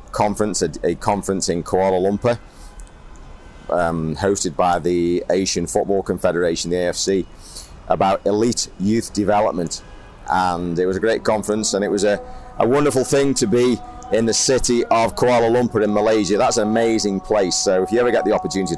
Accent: British